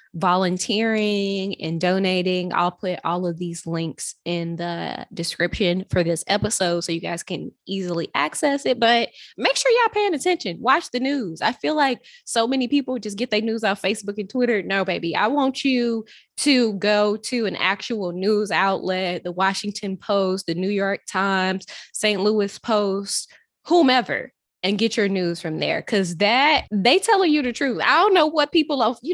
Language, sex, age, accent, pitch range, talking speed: English, female, 20-39, American, 185-240 Hz, 180 wpm